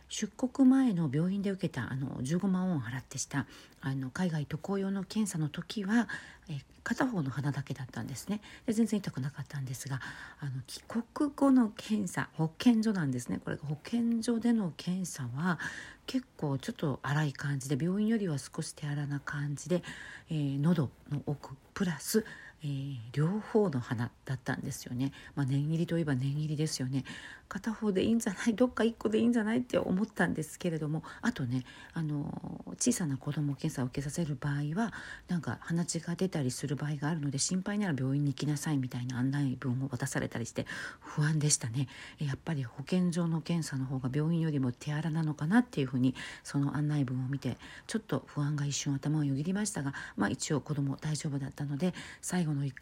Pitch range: 140-185 Hz